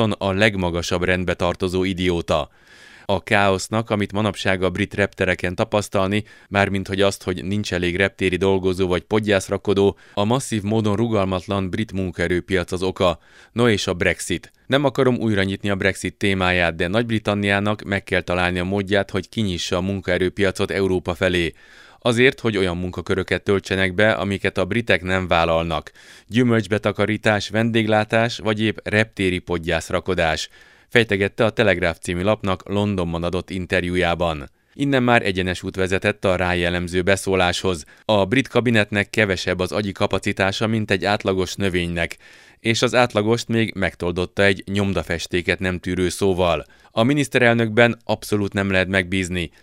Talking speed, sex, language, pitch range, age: 140 wpm, male, Hungarian, 90-105 Hz, 30-49